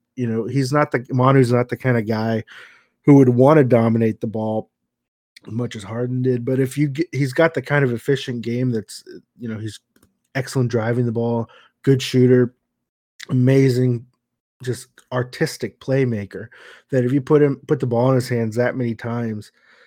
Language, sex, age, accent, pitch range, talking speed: English, male, 20-39, American, 110-125 Hz, 185 wpm